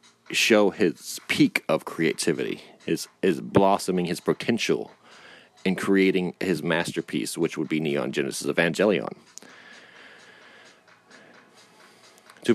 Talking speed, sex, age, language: 95 wpm, male, 30-49, English